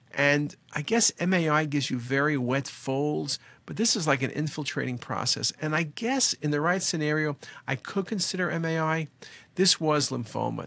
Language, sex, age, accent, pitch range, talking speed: English, male, 50-69, American, 130-160 Hz, 170 wpm